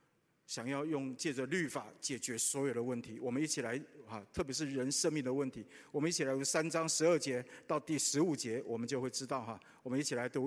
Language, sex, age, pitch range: Chinese, male, 50-69, 135-180 Hz